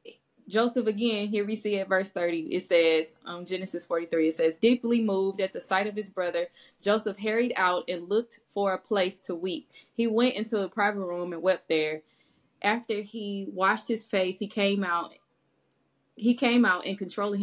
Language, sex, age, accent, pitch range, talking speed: English, female, 20-39, American, 175-210 Hz, 195 wpm